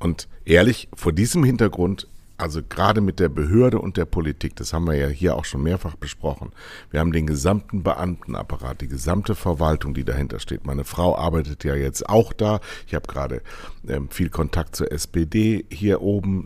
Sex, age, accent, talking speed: male, 60-79, German, 180 wpm